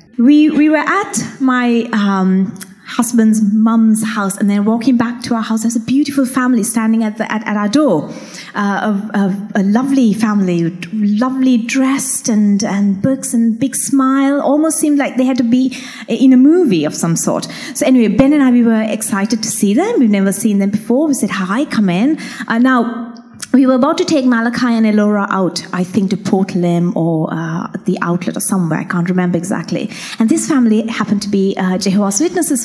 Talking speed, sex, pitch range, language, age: 205 wpm, female, 210-275 Hz, English, 20-39